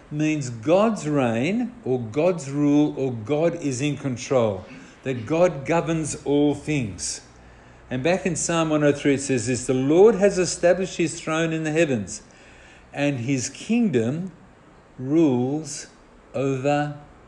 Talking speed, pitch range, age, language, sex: 130 wpm, 130-165 Hz, 50-69, English, male